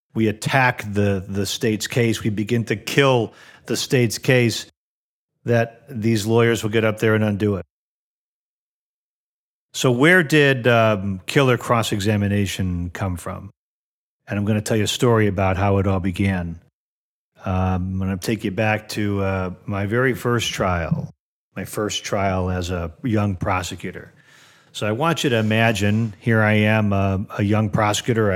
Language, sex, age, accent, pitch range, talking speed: English, male, 40-59, American, 100-120 Hz, 165 wpm